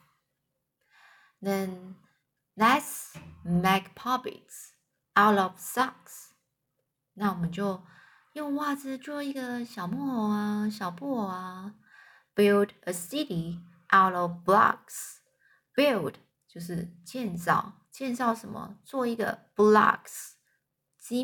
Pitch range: 175-250 Hz